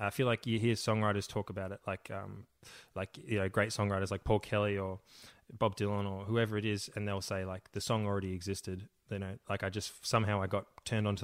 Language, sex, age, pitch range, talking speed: English, male, 20-39, 95-110 Hz, 235 wpm